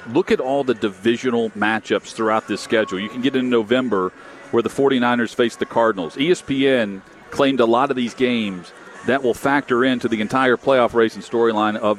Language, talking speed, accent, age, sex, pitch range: English, 190 wpm, American, 40-59, male, 110-140 Hz